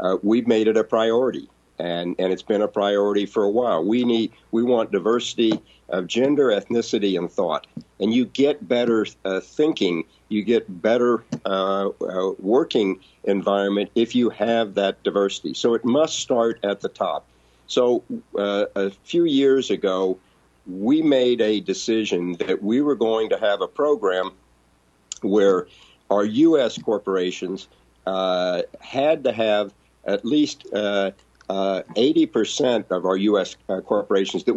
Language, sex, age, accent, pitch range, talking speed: English, male, 50-69, American, 95-120 Hz, 150 wpm